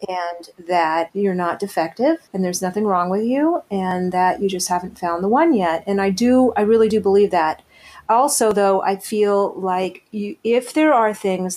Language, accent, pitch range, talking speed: English, American, 185-220 Hz, 195 wpm